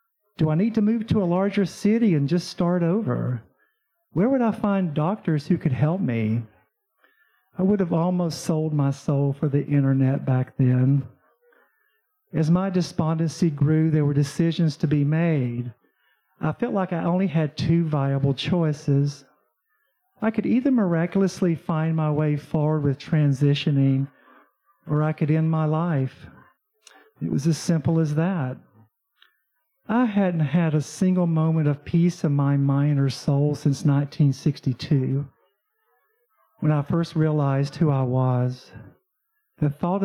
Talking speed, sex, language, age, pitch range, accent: 150 wpm, male, English, 50-69, 140-175 Hz, American